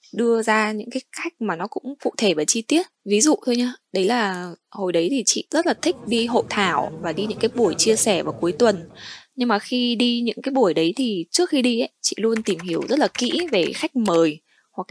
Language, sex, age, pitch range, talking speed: Vietnamese, female, 10-29, 180-245 Hz, 255 wpm